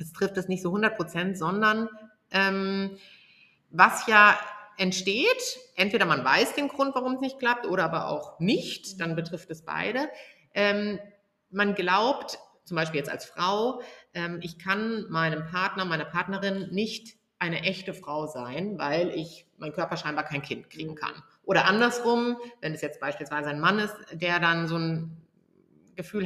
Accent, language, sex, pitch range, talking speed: German, German, female, 165-215 Hz, 165 wpm